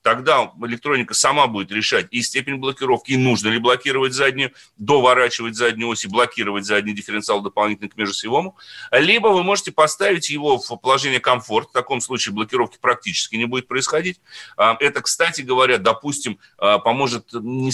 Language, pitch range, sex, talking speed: Russian, 115-160 Hz, male, 150 wpm